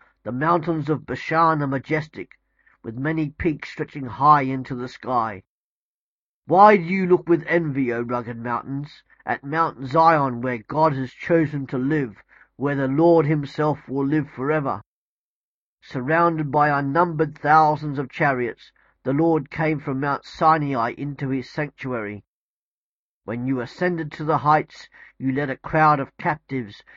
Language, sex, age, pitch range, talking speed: English, male, 50-69, 130-160 Hz, 145 wpm